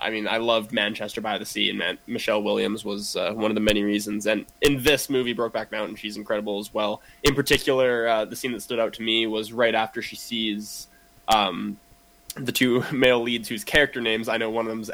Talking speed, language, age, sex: 230 wpm, English, 10-29, male